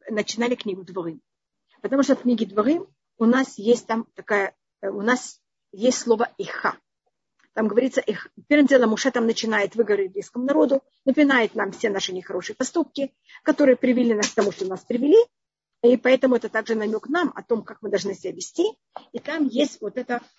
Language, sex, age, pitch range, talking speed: Russian, female, 40-59, 210-275 Hz, 180 wpm